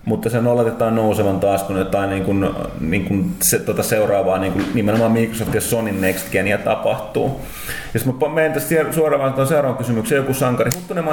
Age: 30-49